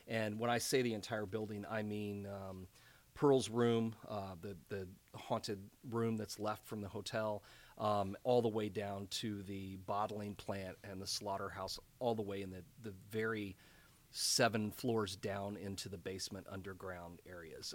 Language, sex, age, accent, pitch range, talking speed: English, male, 40-59, American, 105-125 Hz, 165 wpm